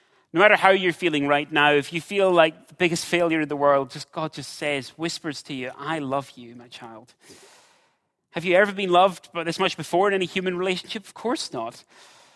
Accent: British